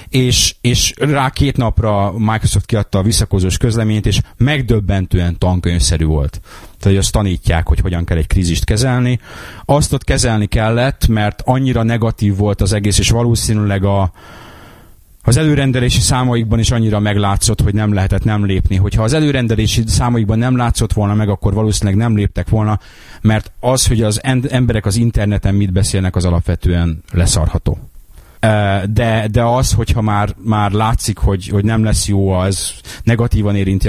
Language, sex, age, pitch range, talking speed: Hungarian, male, 30-49, 100-120 Hz, 155 wpm